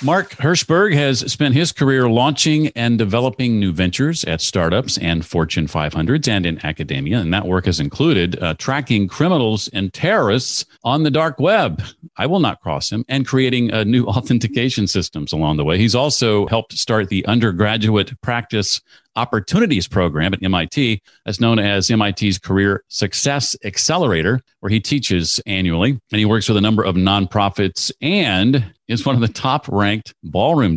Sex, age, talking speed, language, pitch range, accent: male, 50-69, 165 wpm, English, 100-130 Hz, American